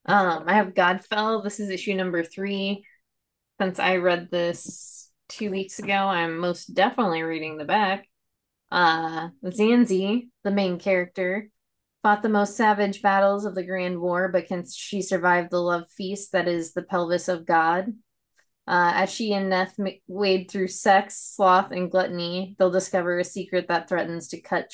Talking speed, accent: 165 wpm, American